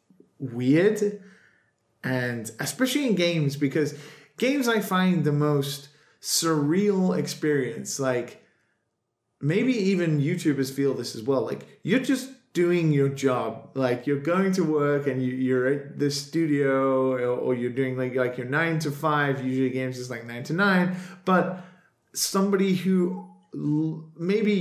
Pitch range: 135-180 Hz